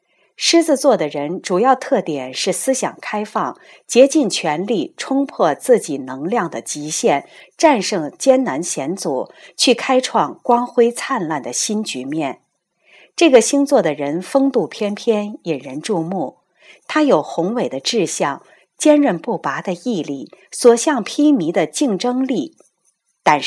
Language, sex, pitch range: Chinese, female, 170-265 Hz